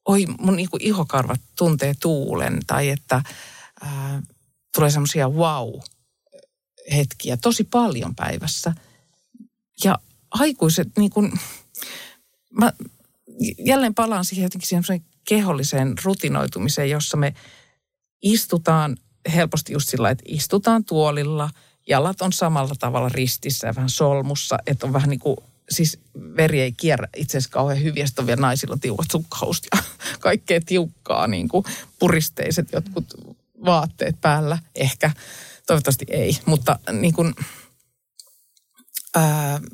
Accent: native